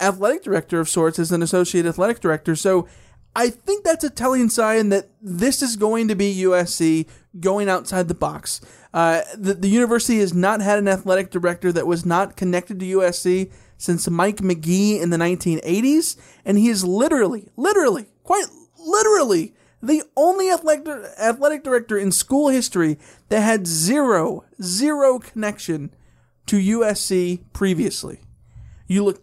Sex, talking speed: male, 155 wpm